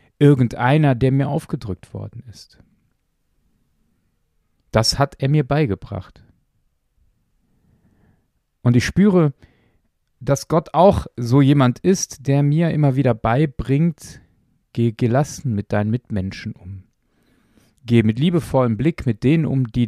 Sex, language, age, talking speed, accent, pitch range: male, German, 40-59, 120 wpm, German, 115-145 Hz